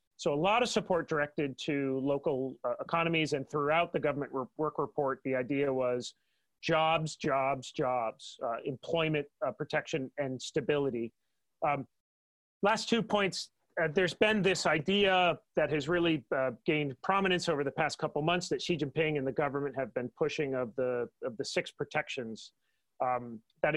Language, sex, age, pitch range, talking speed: English, male, 30-49, 135-170 Hz, 160 wpm